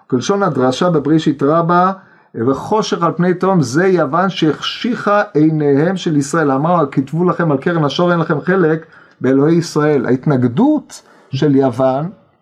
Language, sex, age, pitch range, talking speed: Hebrew, male, 50-69, 130-185 Hz, 135 wpm